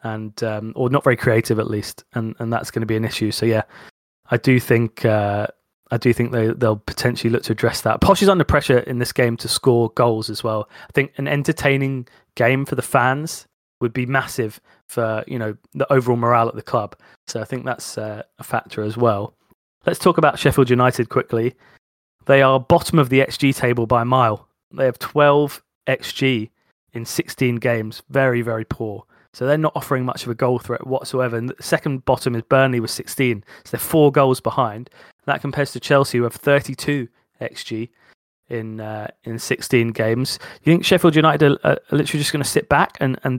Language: English